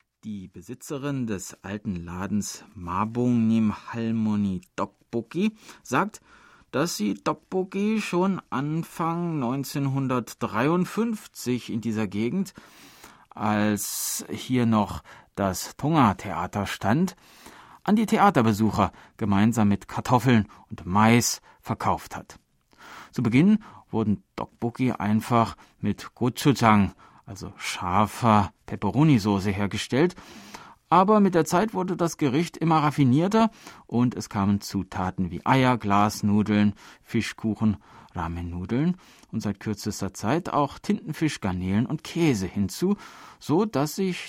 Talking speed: 105 wpm